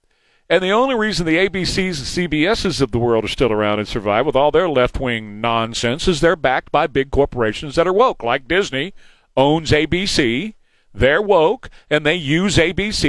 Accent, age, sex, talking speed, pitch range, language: American, 50-69, male, 185 wpm, 125-185 Hz, English